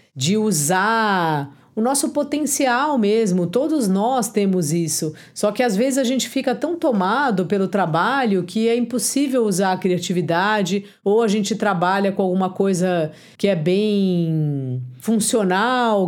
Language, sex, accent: Portuguese, female, Brazilian